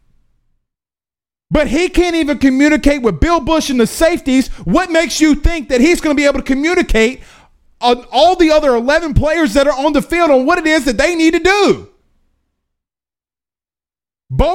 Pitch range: 240-335 Hz